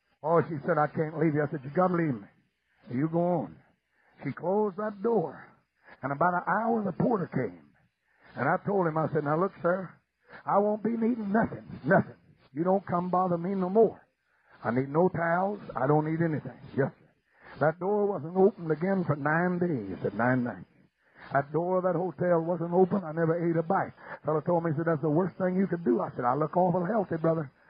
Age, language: 60-79, English